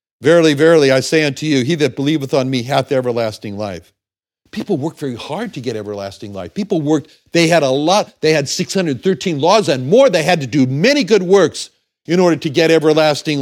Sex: male